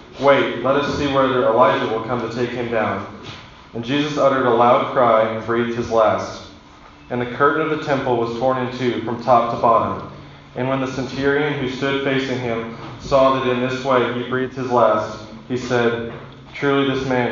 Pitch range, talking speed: 115-135 Hz, 200 wpm